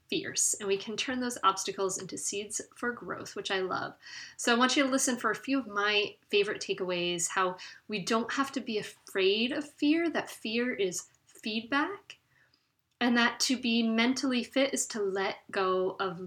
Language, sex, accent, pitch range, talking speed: English, female, American, 185-245 Hz, 190 wpm